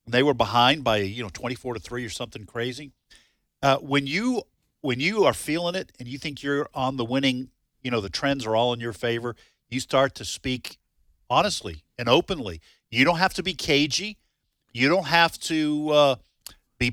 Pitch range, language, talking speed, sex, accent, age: 115-150 Hz, English, 200 wpm, male, American, 50-69